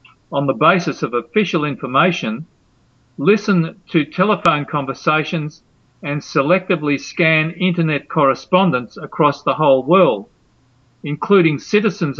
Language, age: English, 50-69